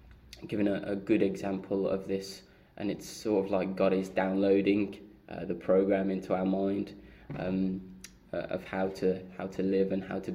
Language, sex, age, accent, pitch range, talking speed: English, male, 20-39, British, 95-100 Hz, 185 wpm